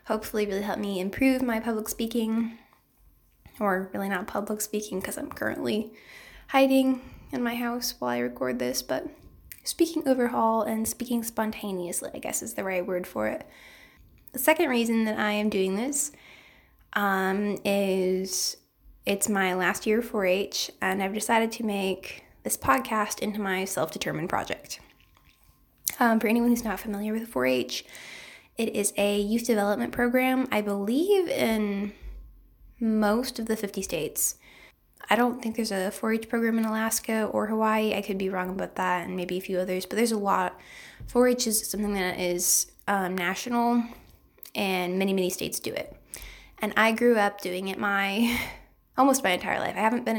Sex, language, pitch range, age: female, English, 190-235 Hz, 10-29